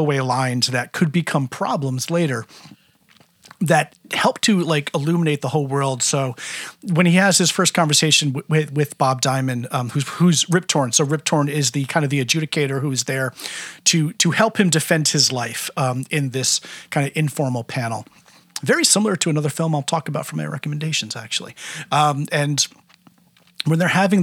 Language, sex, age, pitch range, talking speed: English, male, 40-59, 140-180 Hz, 180 wpm